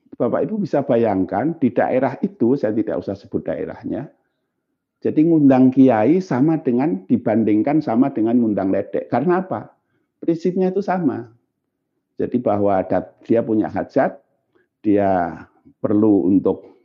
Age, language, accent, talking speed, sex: 50-69, Indonesian, native, 125 wpm, male